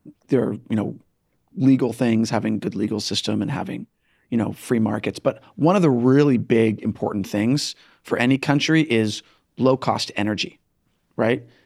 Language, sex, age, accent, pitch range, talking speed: English, male, 40-59, American, 115-140 Hz, 165 wpm